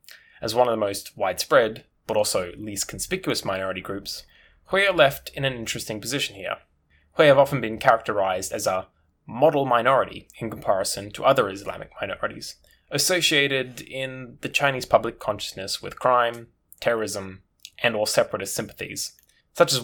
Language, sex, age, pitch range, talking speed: English, male, 10-29, 100-140 Hz, 150 wpm